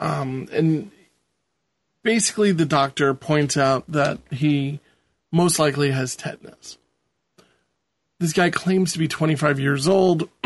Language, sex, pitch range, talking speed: English, male, 135-160 Hz, 120 wpm